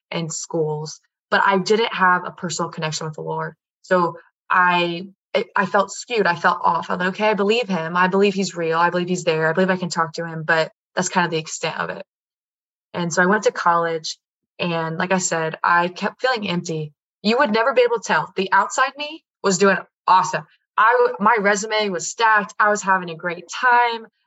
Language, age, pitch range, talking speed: English, 20-39, 170-205 Hz, 215 wpm